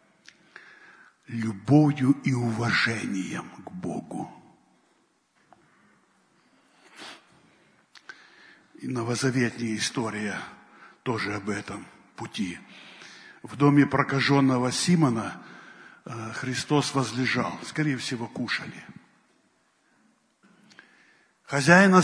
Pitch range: 120-150 Hz